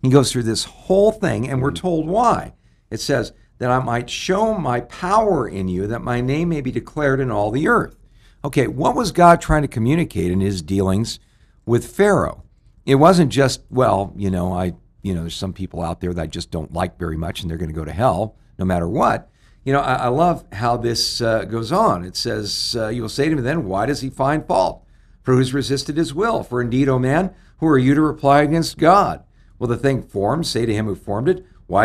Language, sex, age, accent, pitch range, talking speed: English, male, 60-79, American, 105-150 Hz, 235 wpm